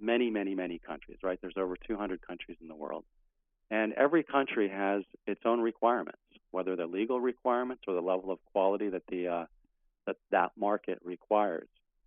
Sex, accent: male, American